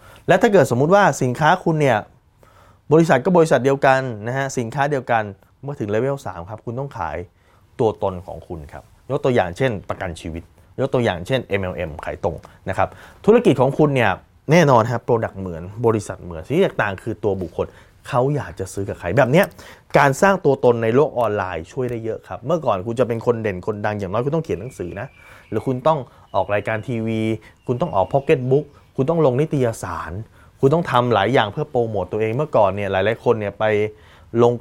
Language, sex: Thai, male